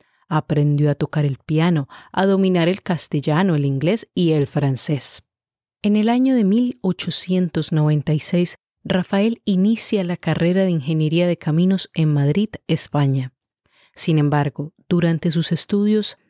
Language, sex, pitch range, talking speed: English, female, 150-195 Hz, 130 wpm